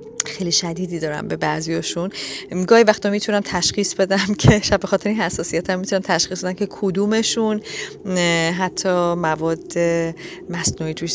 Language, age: Persian, 30-49